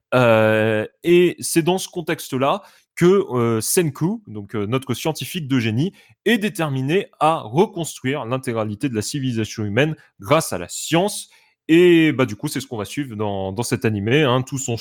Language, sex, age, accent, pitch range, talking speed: French, male, 20-39, French, 115-160 Hz, 180 wpm